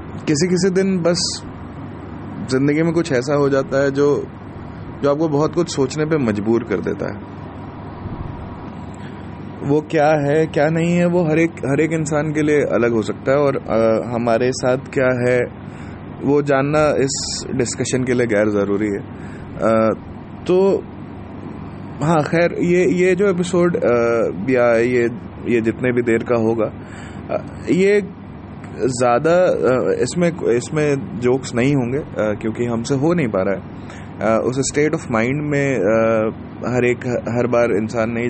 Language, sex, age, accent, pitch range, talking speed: Hindi, male, 20-39, native, 115-155 Hz, 140 wpm